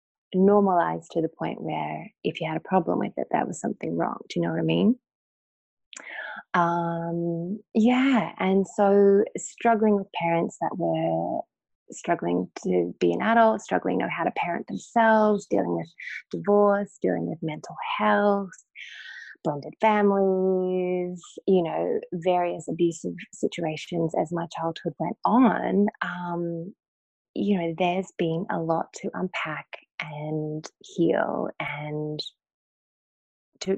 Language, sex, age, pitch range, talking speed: English, female, 20-39, 165-200 Hz, 135 wpm